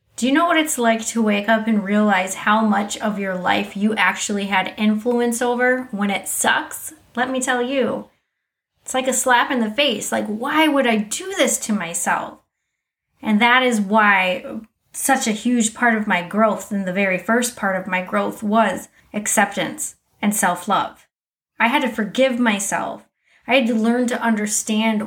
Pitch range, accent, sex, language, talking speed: 195-240 Hz, American, female, English, 185 wpm